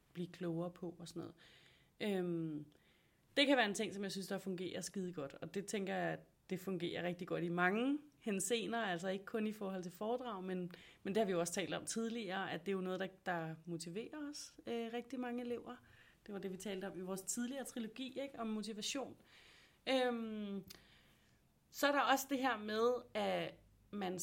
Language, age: Danish, 30-49